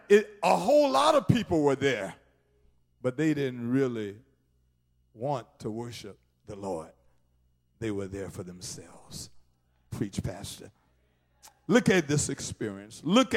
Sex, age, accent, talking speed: male, 50-69, American, 130 wpm